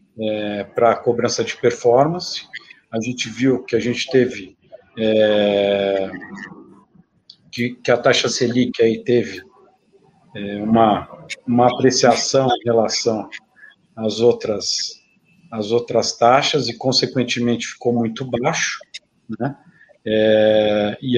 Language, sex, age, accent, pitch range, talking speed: Portuguese, male, 50-69, Brazilian, 115-130 Hz, 100 wpm